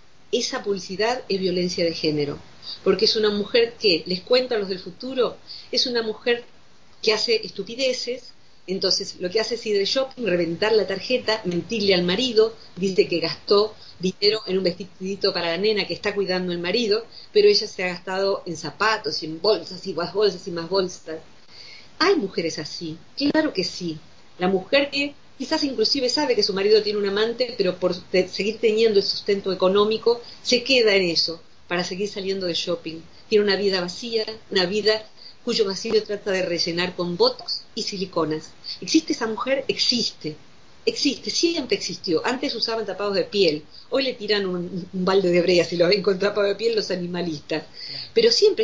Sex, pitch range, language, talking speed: female, 180-230 Hz, Spanish, 180 wpm